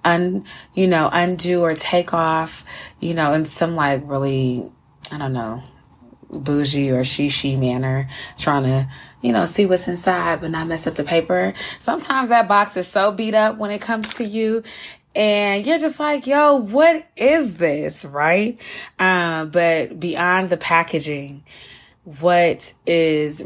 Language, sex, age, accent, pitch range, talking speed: English, female, 20-39, American, 140-175 Hz, 155 wpm